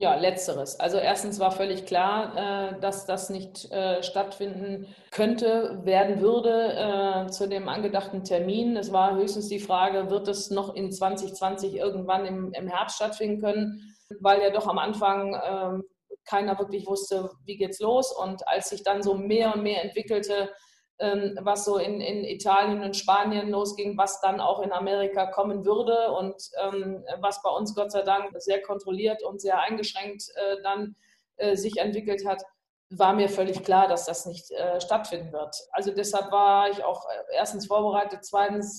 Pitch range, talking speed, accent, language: 190-205 Hz, 160 wpm, German, German